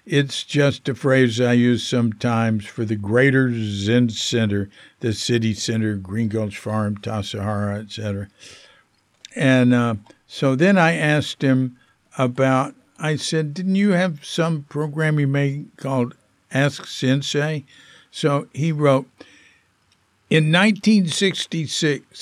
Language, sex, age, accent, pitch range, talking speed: English, male, 60-79, American, 115-150 Hz, 125 wpm